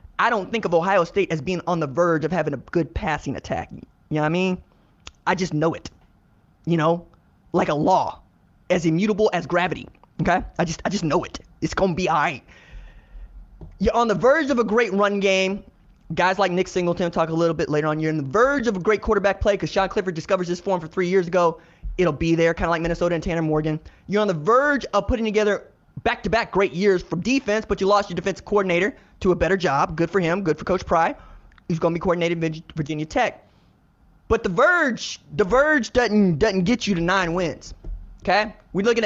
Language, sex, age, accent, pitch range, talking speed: English, male, 20-39, American, 170-210 Hz, 230 wpm